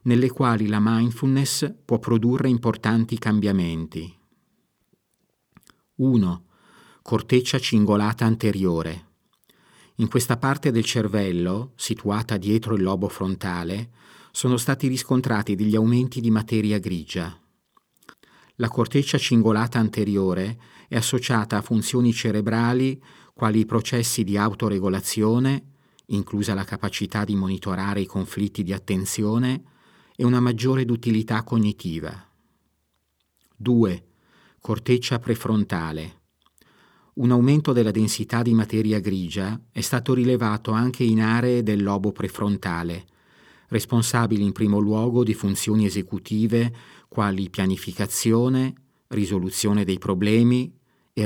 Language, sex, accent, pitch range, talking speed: Italian, male, native, 95-120 Hz, 105 wpm